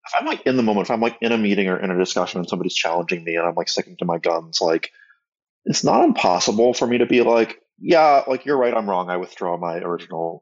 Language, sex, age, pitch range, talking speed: English, male, 20-39, 85-120 Hz, 265 wpm